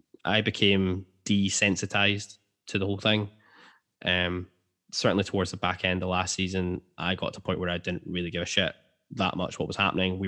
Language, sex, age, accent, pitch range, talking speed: English, male, 10-29, British, 90-105 Hz, 200 wpm